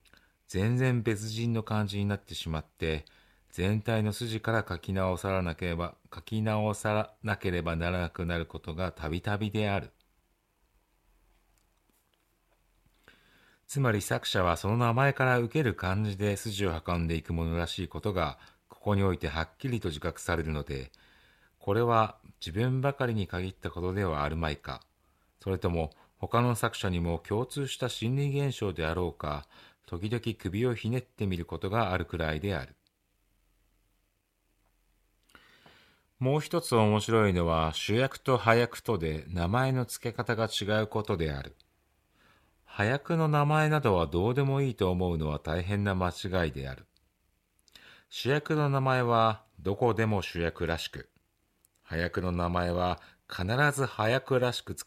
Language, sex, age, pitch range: Japanese, male, 40-59, 85-115 Hz